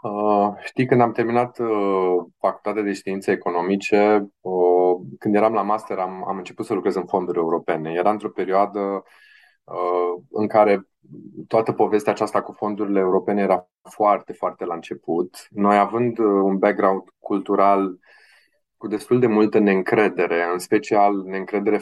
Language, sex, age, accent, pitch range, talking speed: Romanian, male, 20-39, native, 95-110 Hz, 150 wpm